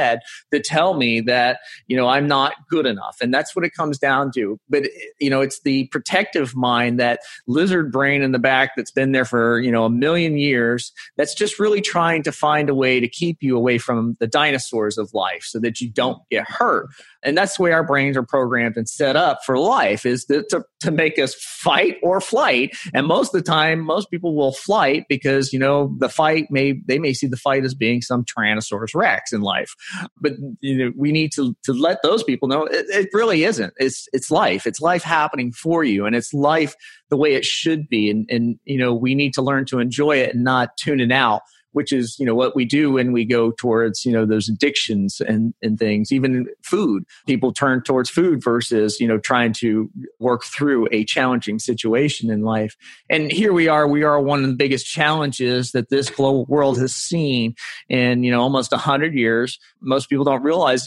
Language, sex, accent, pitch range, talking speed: English, male, American, 120-150 Hz, 220 wpm